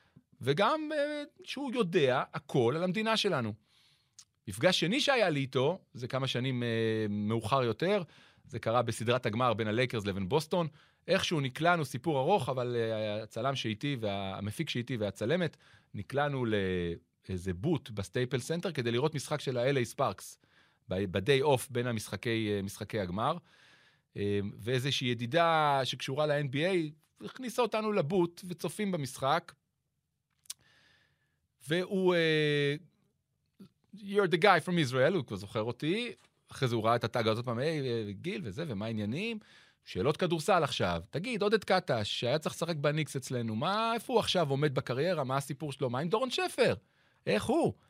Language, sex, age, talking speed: Hebrew, male, 40-59, 140 wpm